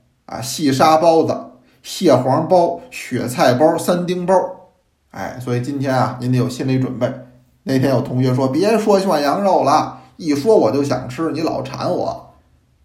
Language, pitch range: Chinese, 120-155 Hz